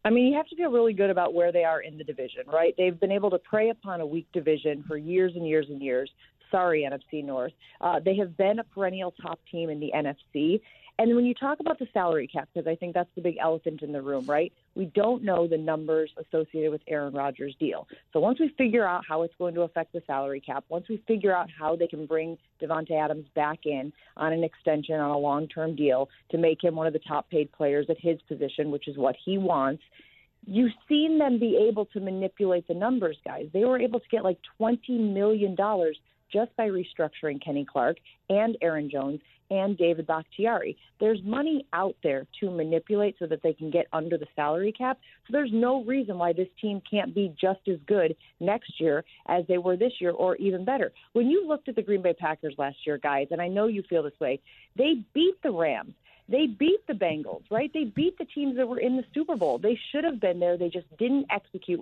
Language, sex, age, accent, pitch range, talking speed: English, female, 40-59, American, 155-220 Hz, 225 wpm